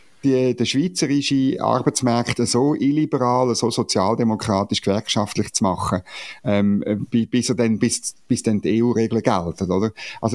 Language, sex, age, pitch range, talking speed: German, male, 50-69, 100-130 Hz, 135 wpm